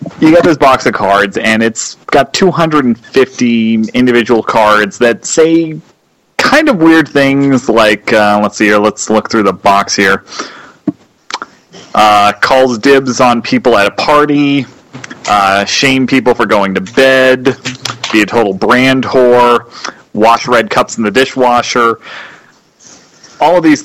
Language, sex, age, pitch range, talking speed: English, male, 30-49, 110-140 Hz, 145 wpm